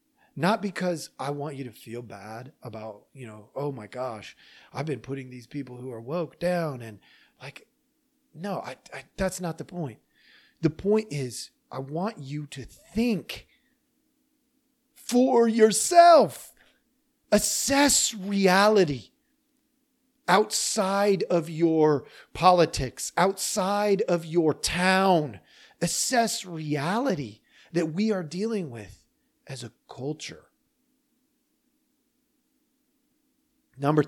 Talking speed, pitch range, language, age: 110 wpm, 140-225 Hz, English, 40-59